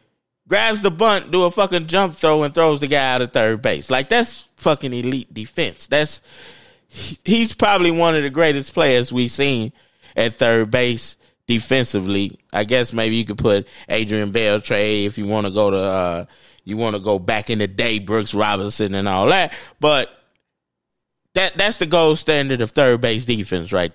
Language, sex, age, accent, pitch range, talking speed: English, male, 20-39, American, 115-175 Hz, 185 wpm